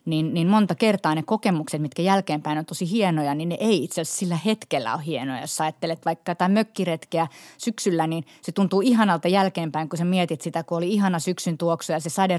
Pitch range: 160-185 Hz